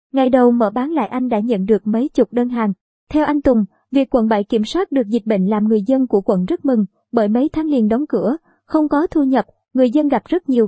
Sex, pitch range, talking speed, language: male, 220-275 Hz, 260 wpm, Vietnamese